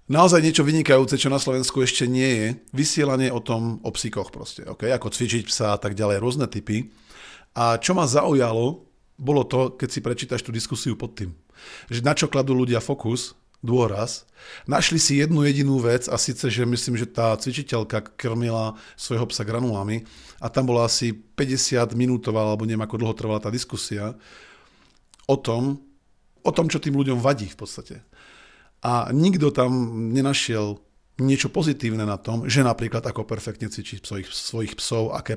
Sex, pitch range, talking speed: male, 110-140 Hz, 170 wpm